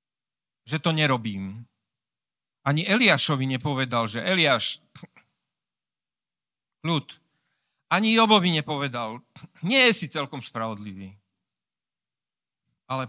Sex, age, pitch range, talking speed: male, 50-69, 120-160 Hz, 85 wpm